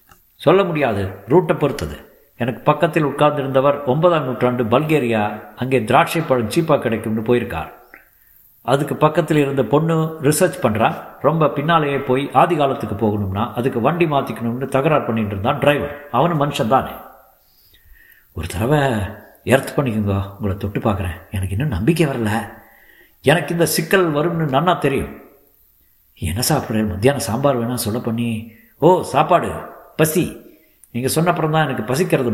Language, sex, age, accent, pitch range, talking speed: Tamil, male, 50-69, native, 110-145 Hz, 120 wpm